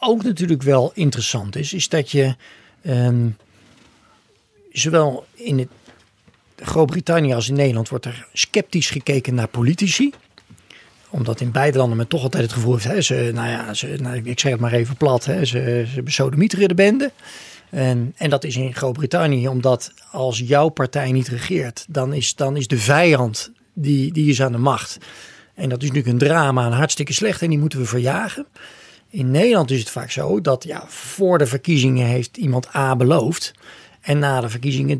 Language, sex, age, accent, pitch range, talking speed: Dutch, male, 40-59, Dutch, 125-170 Hz, 185 wpm